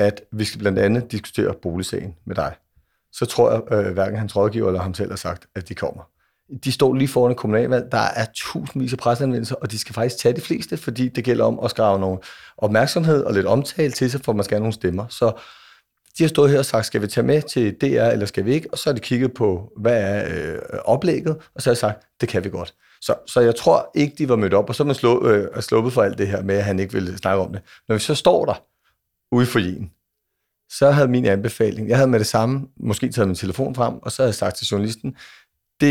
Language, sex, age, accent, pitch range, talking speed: Danish, male, 40-59, native, 105-135 Hz, 250 wpm